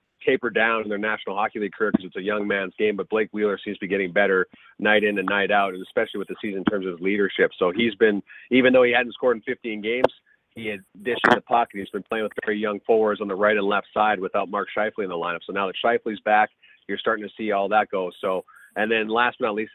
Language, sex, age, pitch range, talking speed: English, male, 30-49, 100-110 Hz, 280 wpm